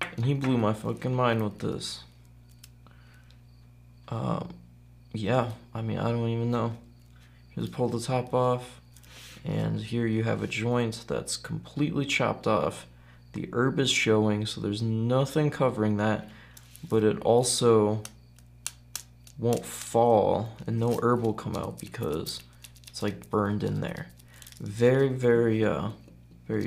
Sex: male